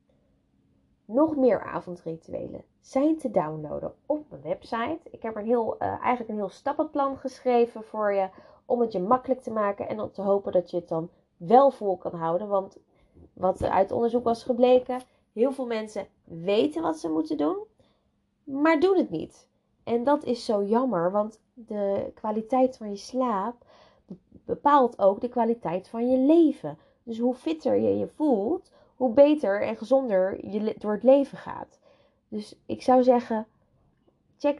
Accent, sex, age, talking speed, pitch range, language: Dutch, female, 20-39, 170 wpm, 180-255 Hz, Dutch